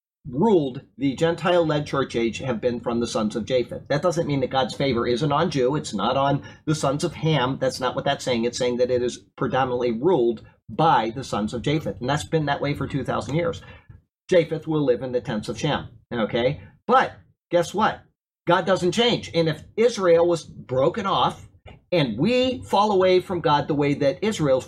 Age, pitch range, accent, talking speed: 40-59, 125-170 Hz, American, 205 wpm